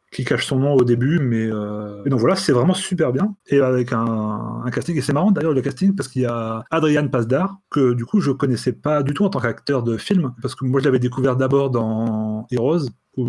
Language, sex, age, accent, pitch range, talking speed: French, male, 30-49, French, 115-145 Hz, 255 wpm